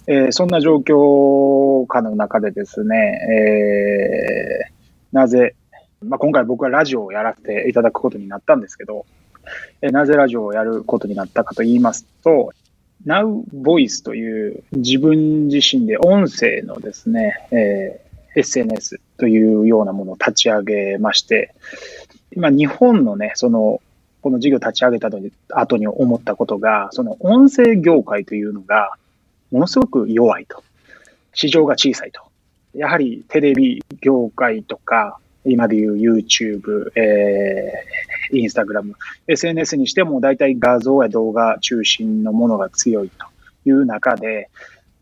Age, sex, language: 20-39, male, Japanese